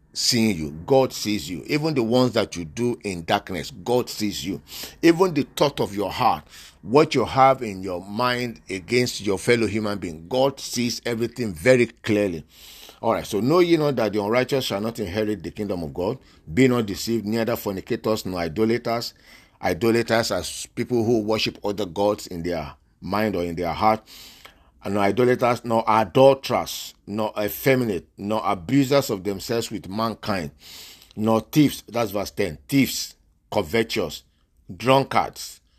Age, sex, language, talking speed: 50-69, male, English, 160 wpm